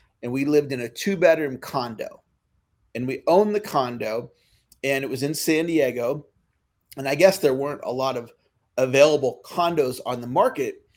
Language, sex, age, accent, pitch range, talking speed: English, male, 40-59, American, 135-170 Hz, 170 wpm